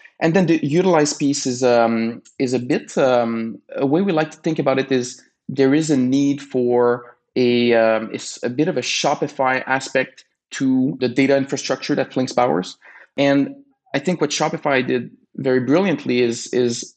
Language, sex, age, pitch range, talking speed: English, male, 20-39, 120-145 Hz, 180 wpm